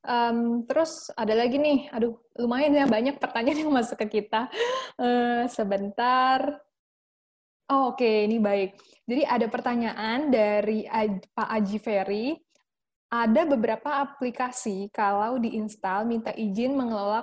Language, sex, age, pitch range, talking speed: Indonesian, female, 10-29, 210-265 Hz, 120 wpm